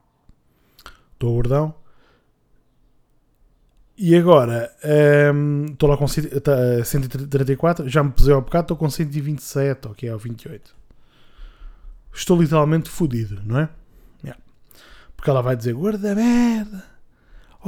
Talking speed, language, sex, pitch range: 120 wpm, Portuguese, male, 135-190 Hz